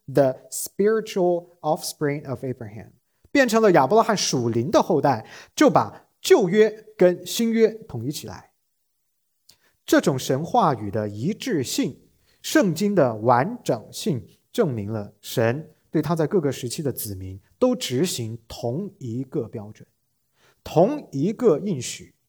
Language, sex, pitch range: English, male, 115-195 Hz